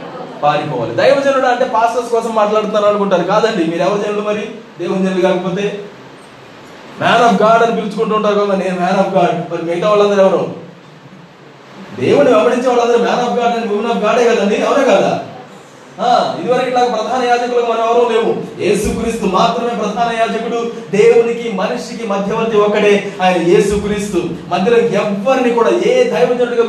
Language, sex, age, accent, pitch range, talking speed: Telugu, male, 20-39, native, 190-235 Hz, 75 wpm